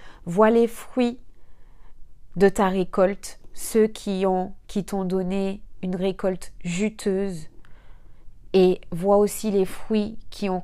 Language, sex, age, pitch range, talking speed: French, female, 20-39, 175-205 Hz, 125 wpm